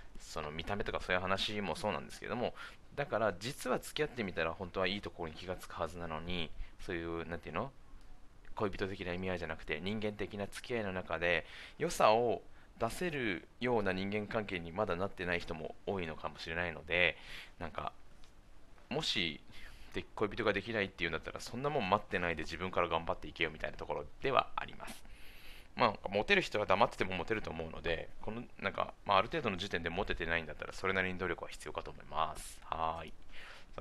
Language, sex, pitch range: Japanese, male, 85-115 Hz